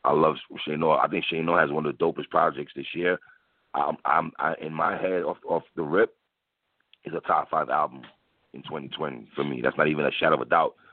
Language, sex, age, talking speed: English, male, 30-49, 225 wpm